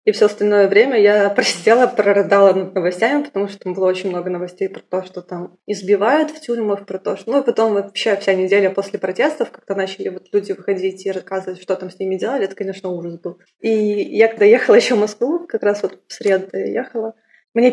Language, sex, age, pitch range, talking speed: Russian, female, 20-39, 195-220 Hz, 220 wpm